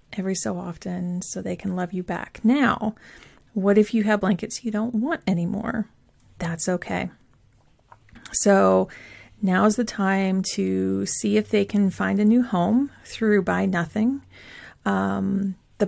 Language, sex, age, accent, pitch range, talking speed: English, female, 30-49, American, 180-215 Hz, 150 wpm